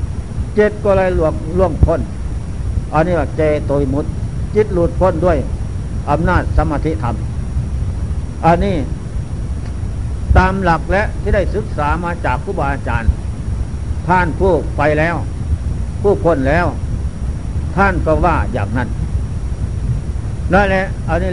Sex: male